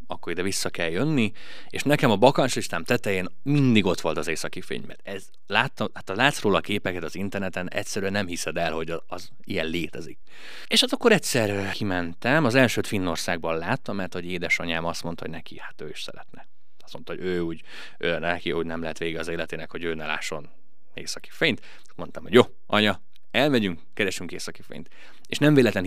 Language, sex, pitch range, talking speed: Hungarian, male, 90-125 Hz, 195 wpm